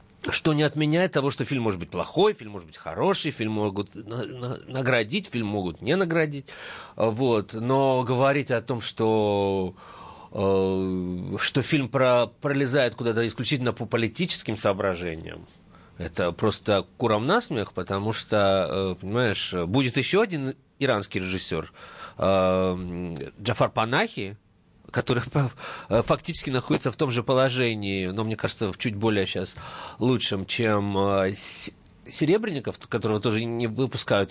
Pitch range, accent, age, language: 95-130 Hz, native, 40-59, Russian